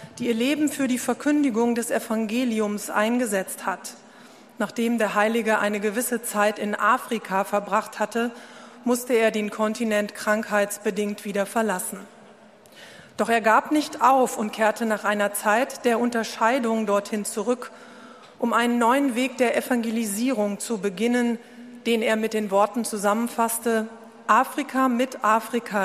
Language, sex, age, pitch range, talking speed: German, female, 40-59, 210-240 Hz, 135 wpm